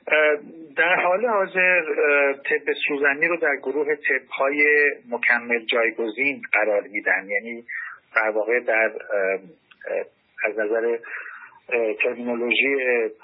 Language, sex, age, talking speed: Persian, male, 50-69, 95 wpm